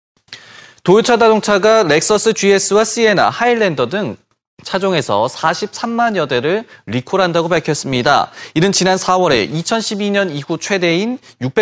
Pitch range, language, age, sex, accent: 140-210 Hz, Korean, 30-49, male, native